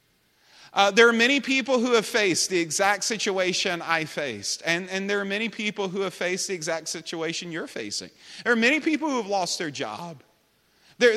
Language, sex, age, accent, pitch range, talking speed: English, male, 40-59, American, 220-310 Hz, 200 wpm